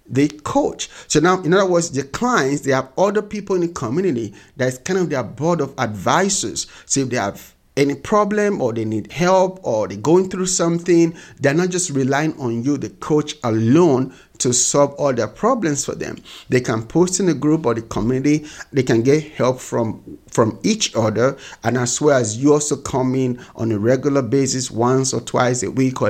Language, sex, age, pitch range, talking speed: English, male, 50-69, 120-165 Hz, 205 wpm